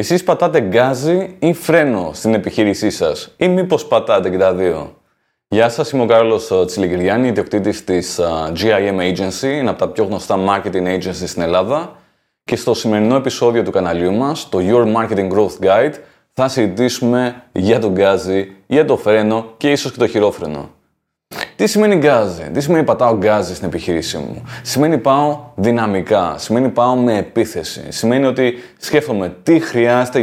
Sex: male